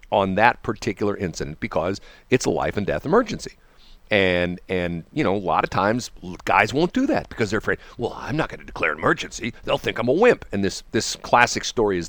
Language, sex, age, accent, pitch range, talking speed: English, male, 50-69, American, 80-105 Hz, 225 wpm